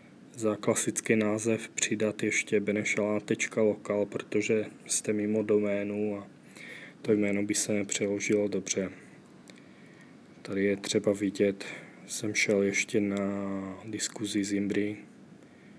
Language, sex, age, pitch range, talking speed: Czech, male, 20-39, 100-110 Hz, 105 wpm